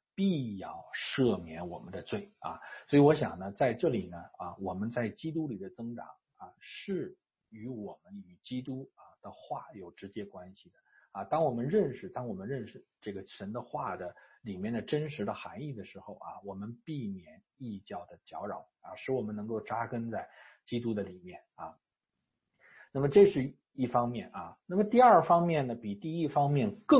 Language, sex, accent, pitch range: English, male, Chinese, 110-180 Hz